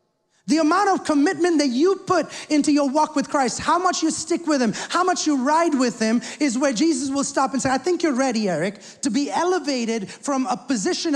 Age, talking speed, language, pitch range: 30-49, 225 wpm, English, 185-270 Hz